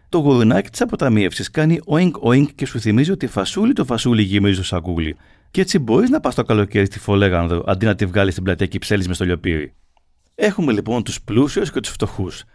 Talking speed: 205 wpm